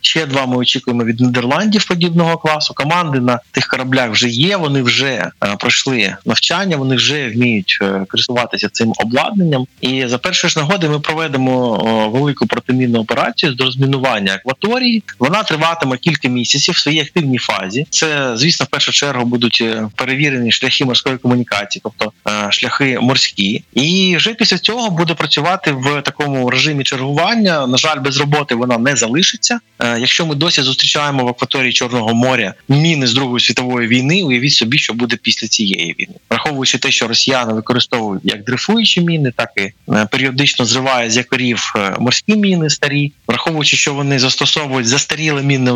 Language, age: Ukrainian, 20-39